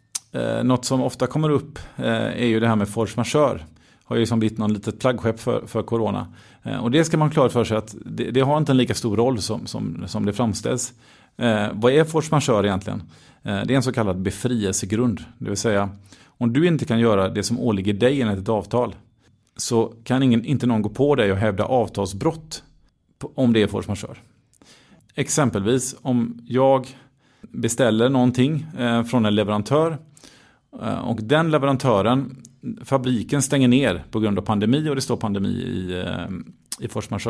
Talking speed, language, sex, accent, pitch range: 180 wpm, Swedish, male, native, 110-135 Hz